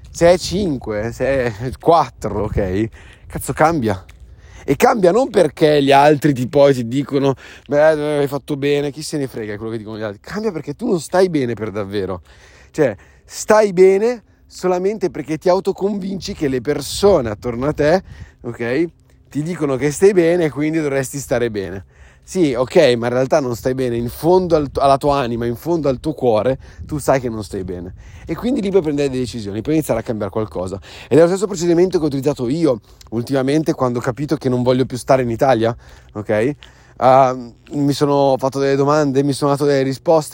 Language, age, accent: Italian, 30-49, native